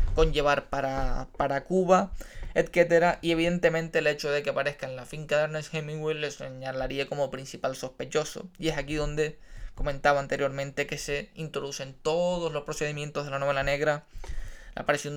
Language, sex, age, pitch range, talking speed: Spanish, male, 20-39, 145-160 Hz, 160 wpm